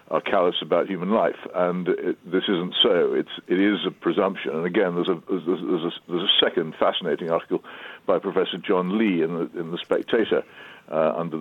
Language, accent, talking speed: English, British, 205 wpm